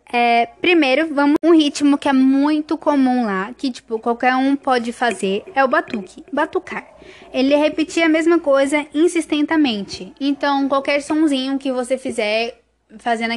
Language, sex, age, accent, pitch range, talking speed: Portuguese, female, 10-29, Brazilian, 240-295 Hz, 145 wpm